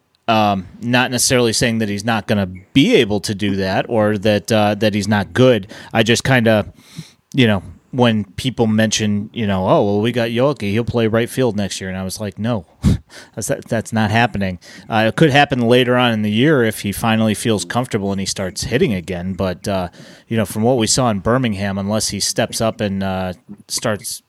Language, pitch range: English, 100-120 Hz